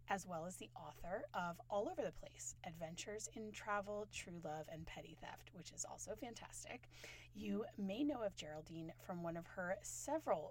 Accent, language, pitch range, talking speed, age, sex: American, English, 160-210 Hz, 185 wpm, 30-49, female